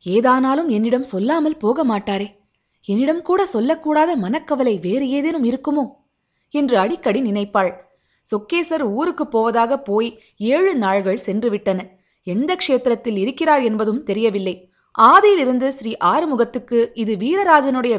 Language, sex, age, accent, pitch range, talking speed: Tamil, female, 20-39, native, 210-280 Hz, 105 wpm